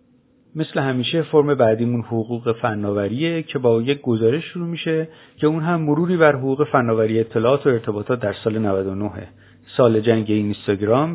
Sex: male